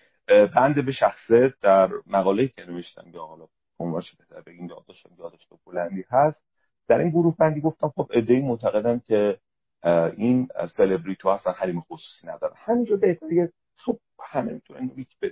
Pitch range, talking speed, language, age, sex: 95-150 Hz, 150 wpm, Persian, 40-59, male